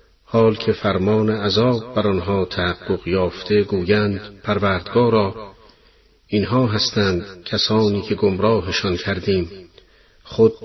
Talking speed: 90 wpm